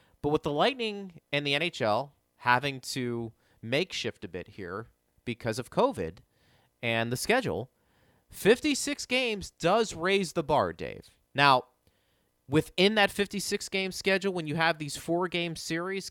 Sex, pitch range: male, 125-180 Hz